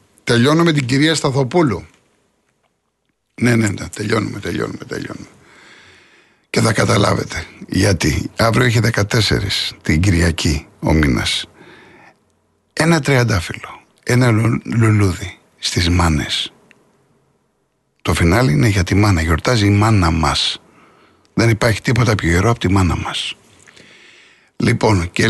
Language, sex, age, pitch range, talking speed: Greek, male, 60-79, 100-125 Hz, 115 wpm